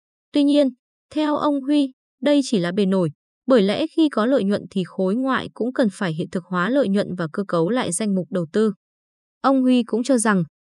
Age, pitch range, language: 20-39, 190-255 Hz, Vietnamese